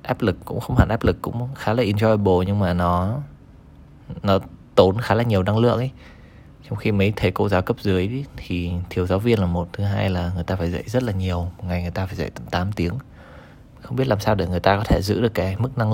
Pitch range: 90-110 Hz